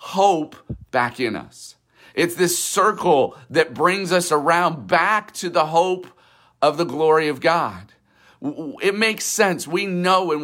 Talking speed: 150 wpm